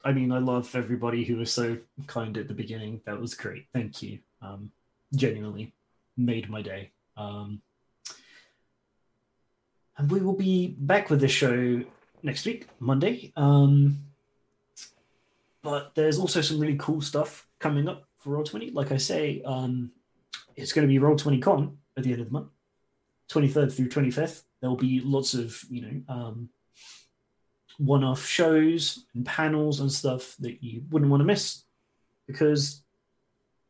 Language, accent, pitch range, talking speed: English, British, 125-150 Hz, 150 wpm